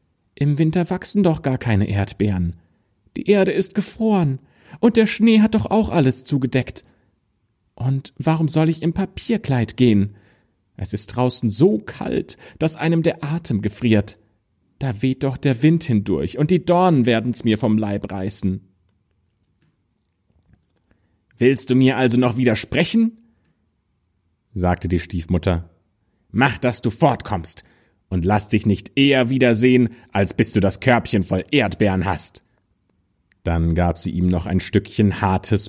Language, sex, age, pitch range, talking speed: German, male, 40-59, 95-125 Hz, 145 wpm